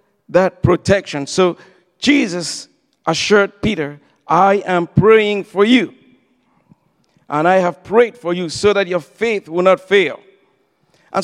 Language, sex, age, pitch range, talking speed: English, male, 50-69, 165-200 Hz, 135 wpm